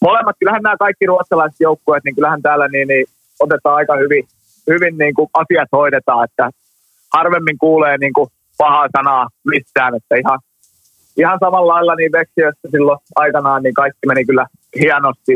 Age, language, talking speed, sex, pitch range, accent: 20-39, Finnish, 155 wpm, male, 140-165 Hz, native